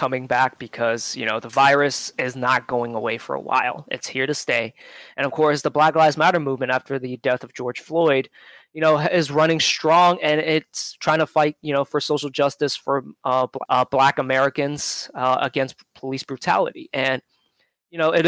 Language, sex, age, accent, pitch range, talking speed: English, male, 20-39, American, 135-165 Hz, 200 wpm